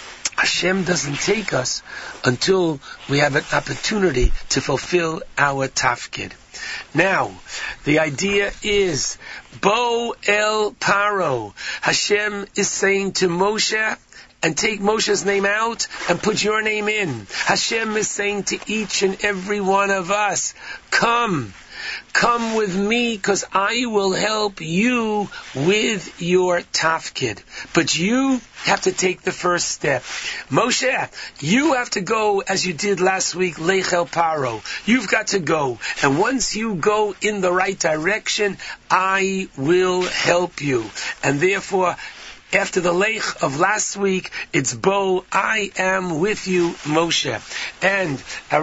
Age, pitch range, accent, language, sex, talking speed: 60-79, 170-205 Hz, American, English, male, 135 wpm